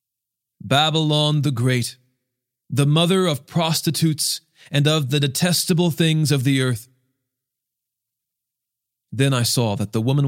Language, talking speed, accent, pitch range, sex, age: English, 125 wpm, American, 125-155 Hz, male, 40-59